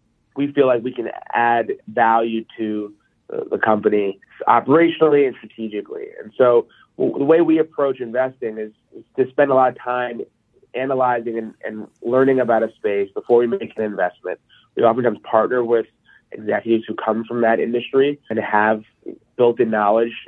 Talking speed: 155 wpm